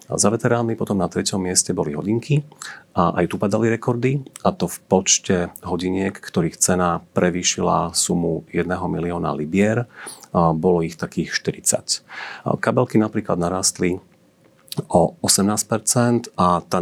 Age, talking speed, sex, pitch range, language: 40-59, 135 wpm, male, 85-105 Hz, Slovak